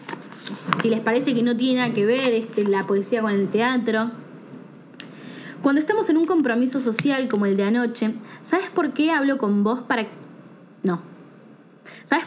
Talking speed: 165 wpm